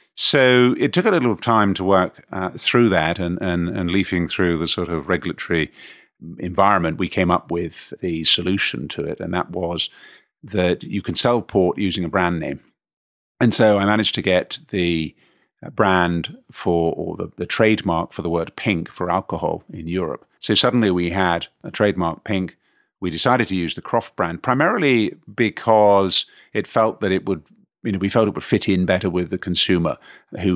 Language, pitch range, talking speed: English, 85-100 Hz, 190 wpm